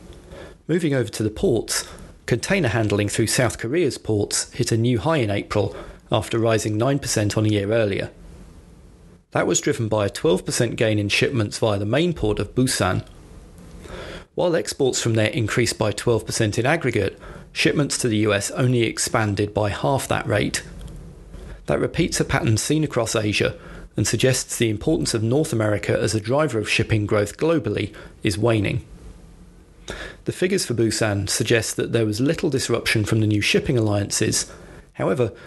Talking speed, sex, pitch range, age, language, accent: 165 wpm, male, 105-125 Hz, 40-59, English, British